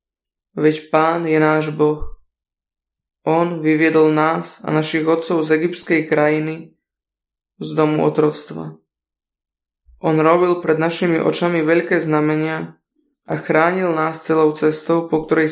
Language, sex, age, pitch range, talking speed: Slovak, male, 20-39, 150-165 Hz, 120 wpm